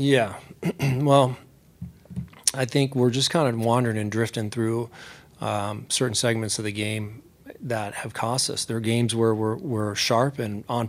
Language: English